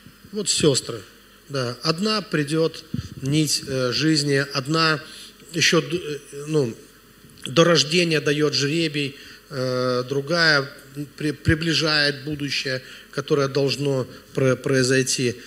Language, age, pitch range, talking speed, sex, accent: Russian, 40-59, 140-175 Hz, 85 wpm, male, native